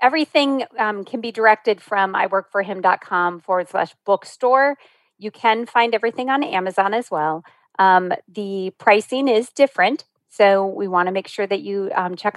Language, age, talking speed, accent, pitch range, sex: English, 40-59, 160 wpm, American, 190-260 Hz, female